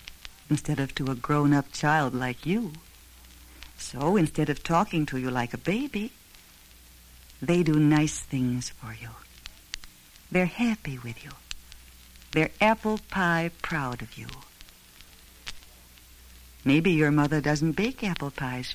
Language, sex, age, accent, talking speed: English, female, 60-79, American, 130 wpm